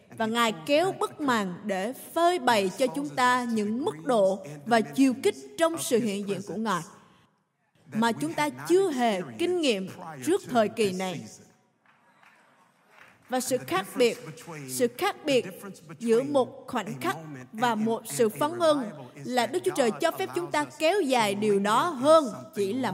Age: 20-39